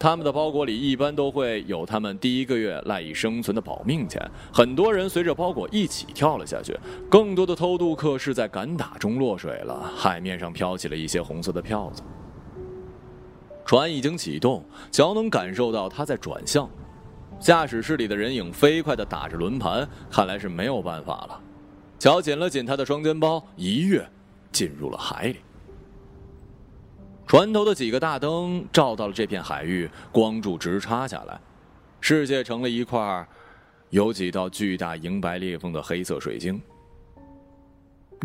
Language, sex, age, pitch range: Chinese, male, 30-49, 100-165 Hz